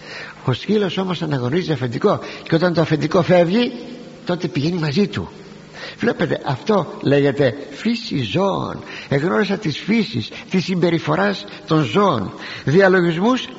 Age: 60-79